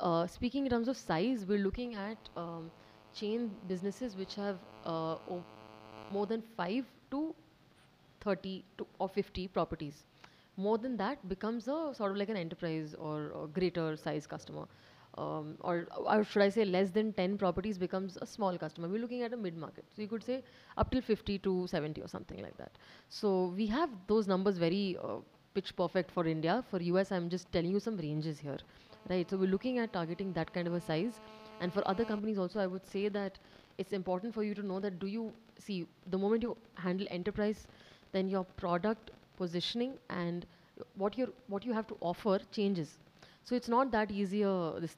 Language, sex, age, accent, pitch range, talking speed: English, female, 30-49, Indian, 170-210 Hz, 195 wpm